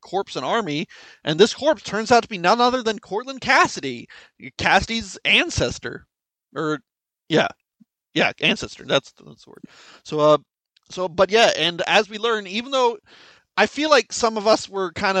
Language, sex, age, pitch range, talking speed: English, male, 30-49, 165-230 Hz, 175 wpm